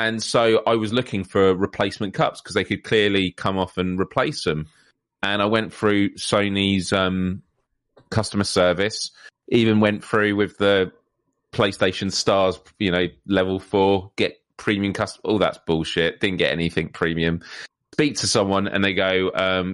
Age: 30-49